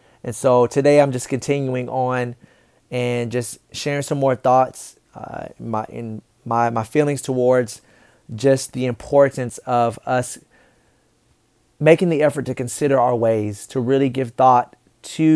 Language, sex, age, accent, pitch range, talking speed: English, male, 20-39, American, 120-135 Hz, 145 wpm